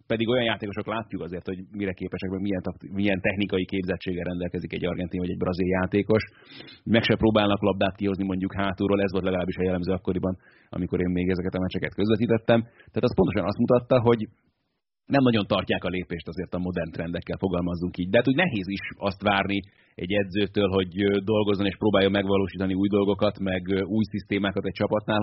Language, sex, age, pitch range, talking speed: Hungarian, male, 30-49, 95-105 Hz, 185 wpm